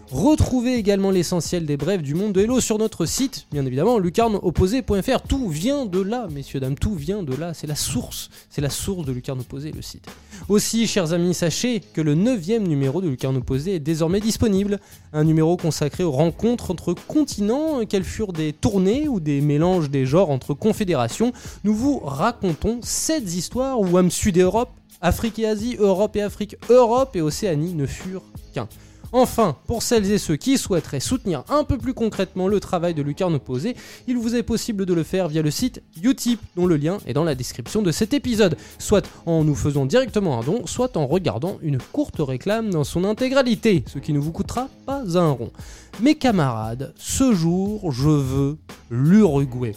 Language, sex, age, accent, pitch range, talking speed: French, male, 20-39, French, 150-220 Hz, 190 wpm